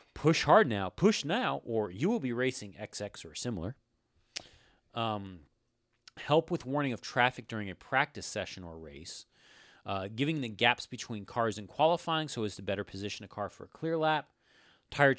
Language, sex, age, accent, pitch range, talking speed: English, male, 30-49, American, 105-145 Hz, 180 wpm